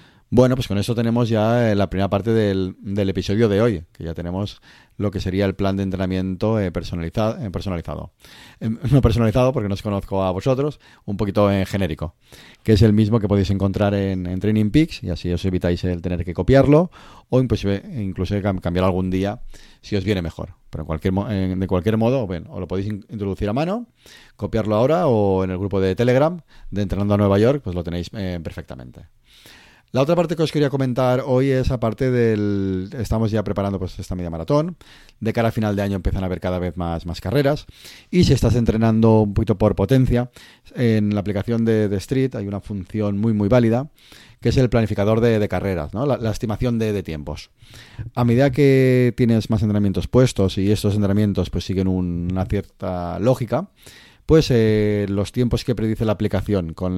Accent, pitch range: Spanish, 95-120 Hz